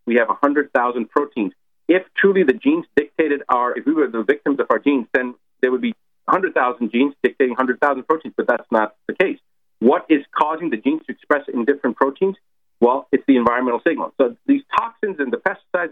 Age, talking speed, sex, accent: 40-59, 200 wpm, male, American